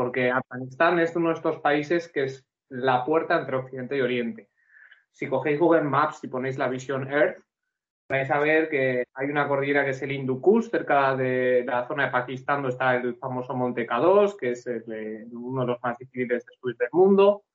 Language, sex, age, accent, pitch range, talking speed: Spanish, male, 20-39, Spanish, 125-155 Hz, 195 wpm